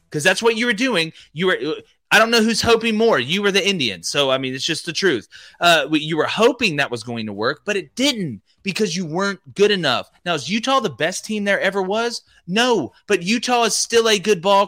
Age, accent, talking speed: 30-49, American, 240 wpm